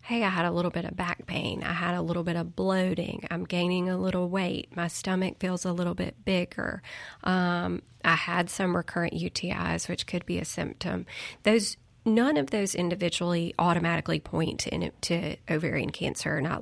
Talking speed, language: 190 wpm, English